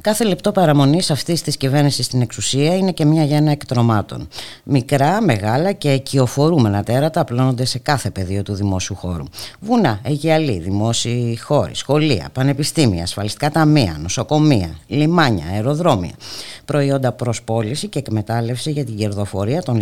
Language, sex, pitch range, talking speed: Greek, female, 110-155 Hz, 135 wpm